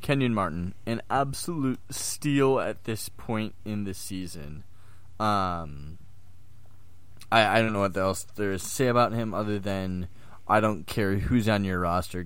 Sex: male